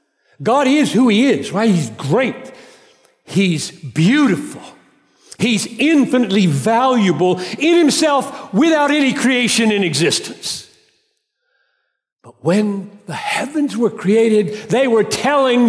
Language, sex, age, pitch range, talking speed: English, male, 60-79, 155-265 Hz, 110 wpm